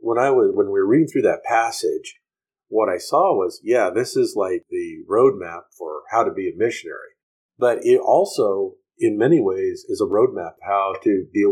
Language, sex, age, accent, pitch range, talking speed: English, male, 50-69, American, 360-425 Hz, 200 wpm